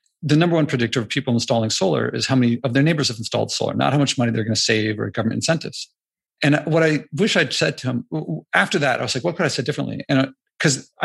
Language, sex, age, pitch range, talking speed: English, male, 40-59, 125-155 Hz, 265 wpm